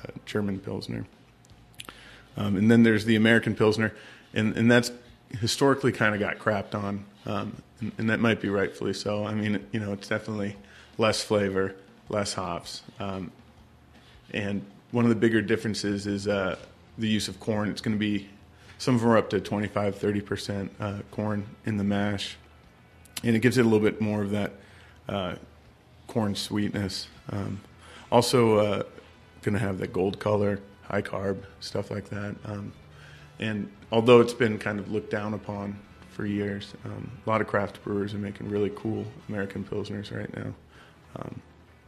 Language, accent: English, American